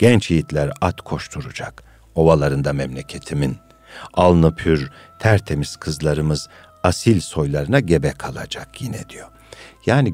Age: 60-79